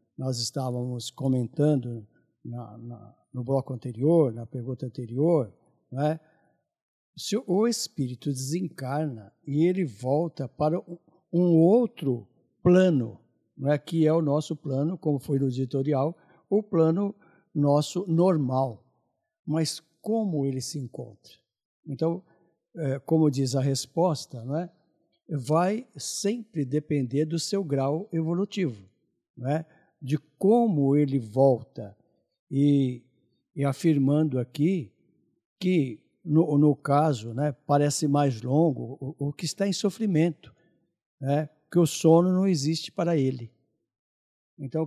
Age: 60-79